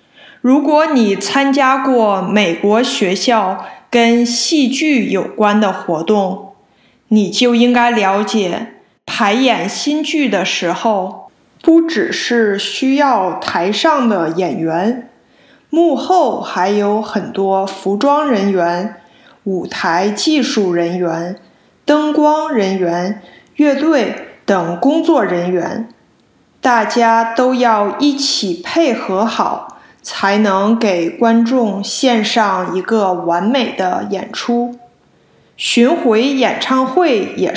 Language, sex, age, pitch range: Chinese, female, 20-39, 195-260 Hz